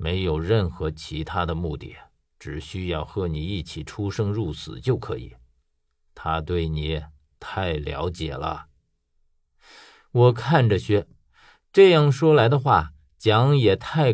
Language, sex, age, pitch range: Chinese, male, 50-69, 75-125 Hz